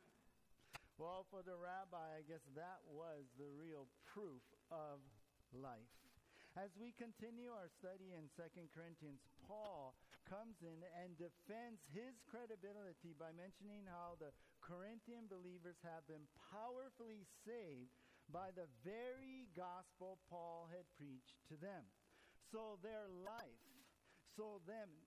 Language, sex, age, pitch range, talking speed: English, male, 50-69, 145-200 Hz, 125 wpm